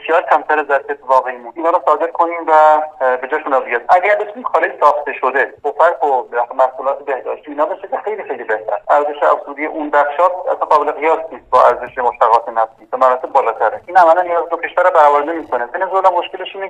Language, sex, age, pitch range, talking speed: Persian, male, 40-59, 135-170 Hz, 175 wpm